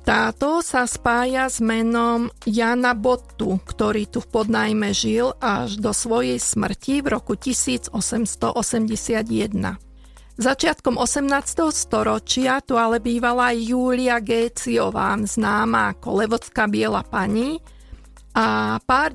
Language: Slovak